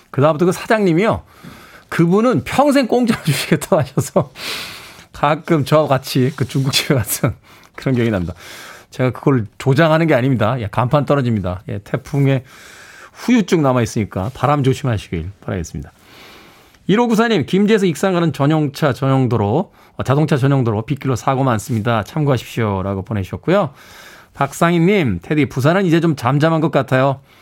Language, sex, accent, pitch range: Korean, male, native, 115-160 Hz